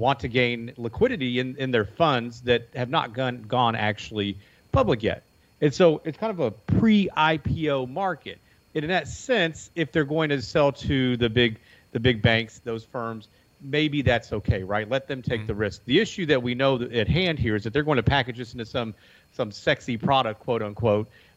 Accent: American